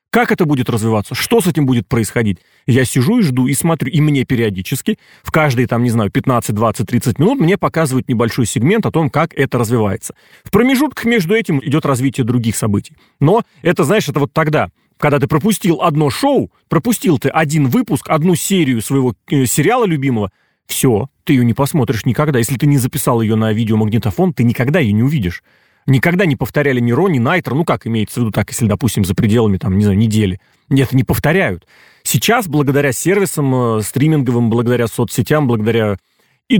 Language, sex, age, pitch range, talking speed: Russian, male, 30-49, 120-155 Hz, 185 wpm